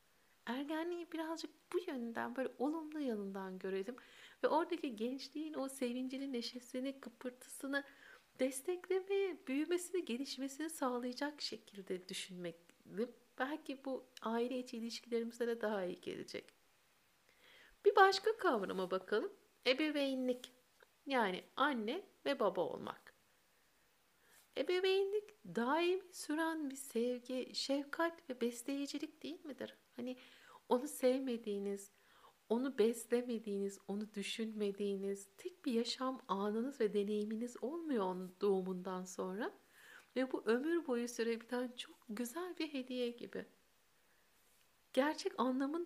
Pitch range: 230-295 Hz